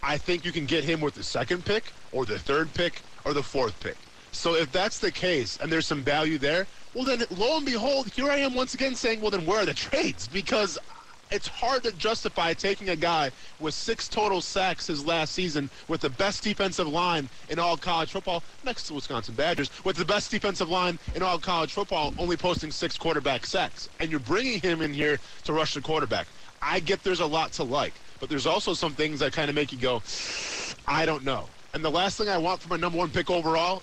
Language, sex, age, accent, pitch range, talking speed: English, male, 30-49, American, 150-195 Hz, 230 wpm